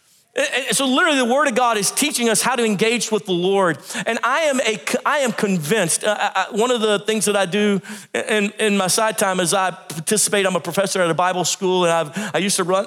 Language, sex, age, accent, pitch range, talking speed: English, male, 40-59, American, 185-230 Hz, 240 wpm